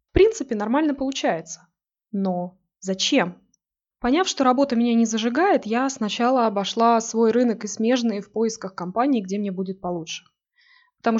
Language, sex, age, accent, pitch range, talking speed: Russian, female, 20-39, native, 200-260 Hz, 145 wpm